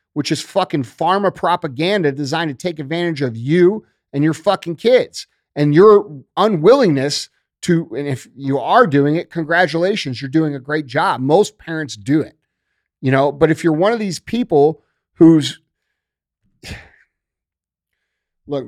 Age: 40-59